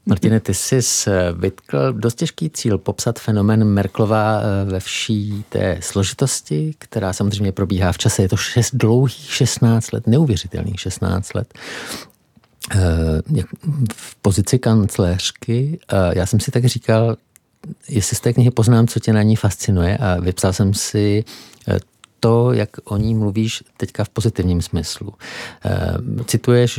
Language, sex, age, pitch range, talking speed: Czech, male, 50-69, 95-120 Hz, 135 wpm